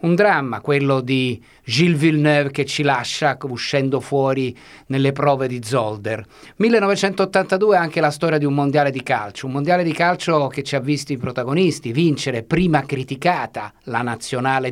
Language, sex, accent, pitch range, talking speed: Italian, male, native, 135-170 Hz, 165 wpm